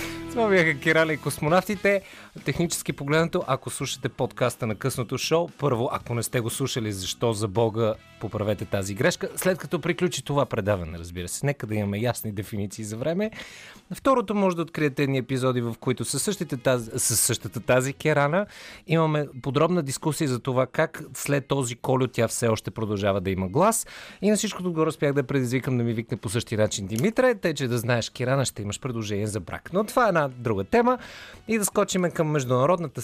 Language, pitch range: Bulgarian, 115-160 Hz